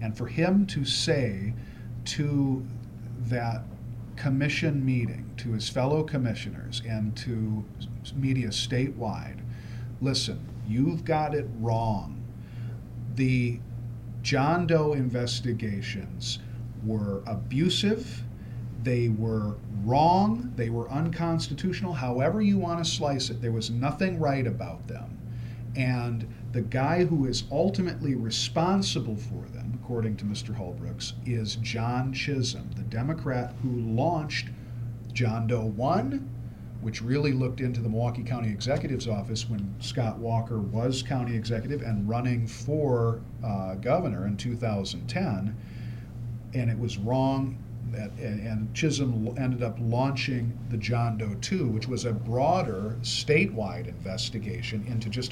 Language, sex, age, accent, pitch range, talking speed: English, male, 50-69, American, 115-130 Hz, 120 wpm